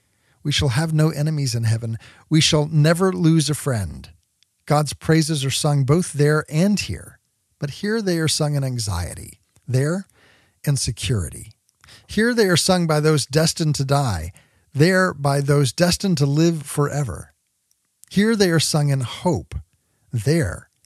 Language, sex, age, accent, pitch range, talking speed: English, male, 40-59, American, 110-165 Hz, 155 wpm